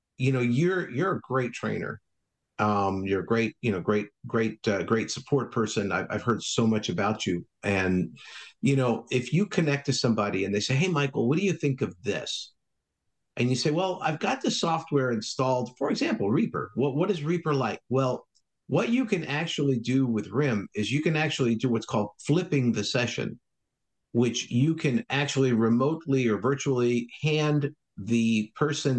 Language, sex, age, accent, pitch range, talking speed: English, male, 50-69, American, 115-140 Hz, 190 wpm